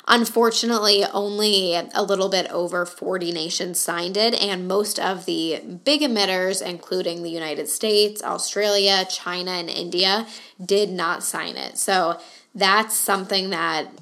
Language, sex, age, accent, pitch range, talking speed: English, female, 10-29, American, 175-210 Hz, 135 wpm